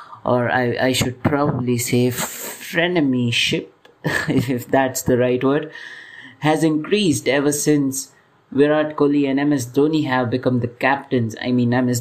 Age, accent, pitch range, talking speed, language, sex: 30-49, Indian, 125-145 Hz, 140 wpm, English, male